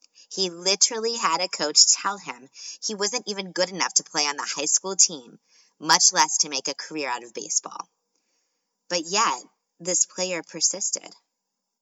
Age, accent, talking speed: 20-39, American, 170 wpm